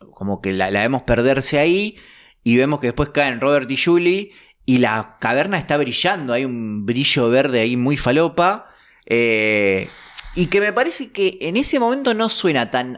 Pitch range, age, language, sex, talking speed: 115-155 Hz, 20-39, Spanish, male, 175 wpm